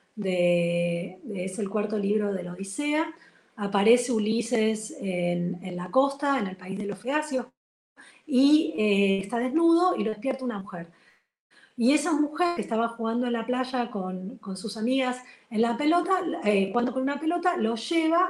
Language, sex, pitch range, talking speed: Spanish, female, 205-270 Hz, 175 wpm